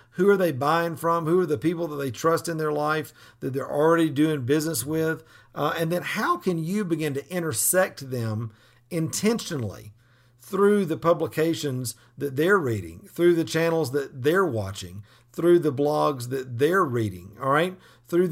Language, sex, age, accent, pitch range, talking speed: English, male, 50-69, American, 120-165 Hz, 175 wpm